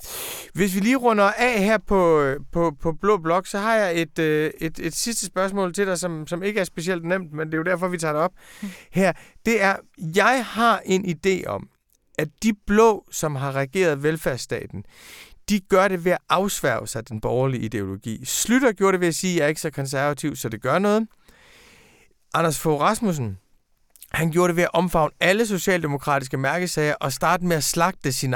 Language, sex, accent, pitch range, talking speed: Danish, male, native, 150-195 Hz, 200 wpm